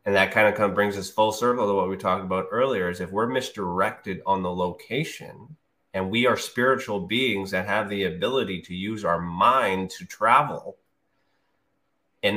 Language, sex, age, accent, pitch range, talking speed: English, male, 30-49, American, 85-100 Hz, 190 wpm